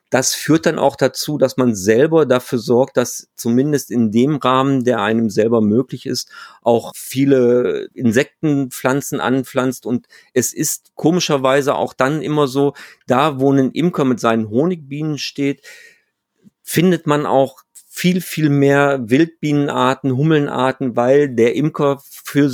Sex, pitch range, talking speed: male, 125-150 Hz, 140 wpm